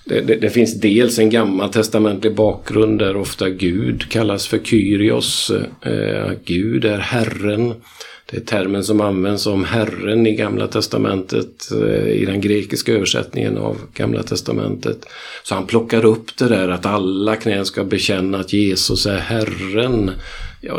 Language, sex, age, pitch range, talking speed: Swedish, male, 50-69, 100-115 Hz, 145 wpm